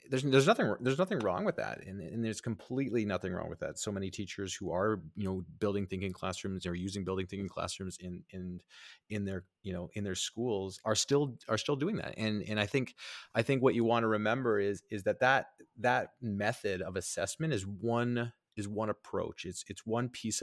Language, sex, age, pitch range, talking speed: English, male, 30-49, 95-120 Hz, 215 wpm